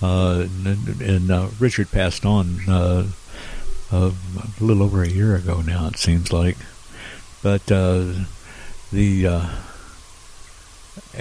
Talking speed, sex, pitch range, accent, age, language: 125 wpm, male, 90-105 Hz, American, 60-79, English